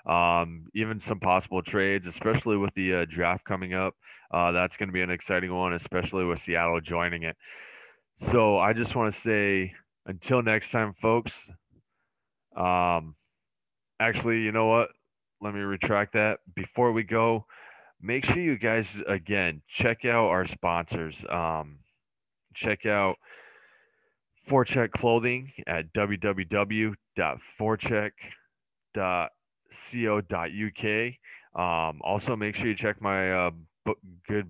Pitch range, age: 90-110 Hz, 20-39